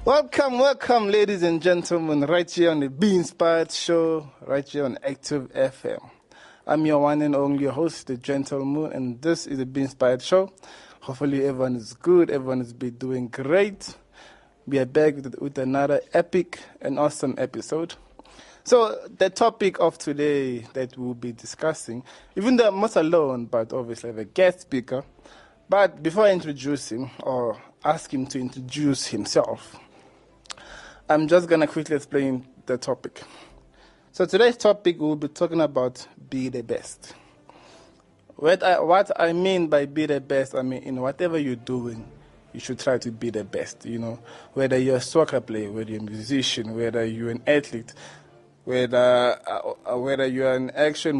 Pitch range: 125-165 Hz